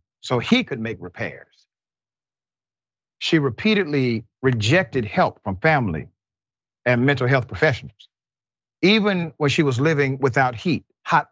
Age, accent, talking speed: 50-69, American, 120 wpm